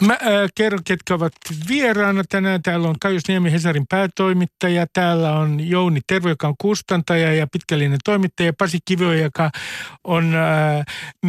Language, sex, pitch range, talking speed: Finnish, male, 165-205 Hz, 150 wpm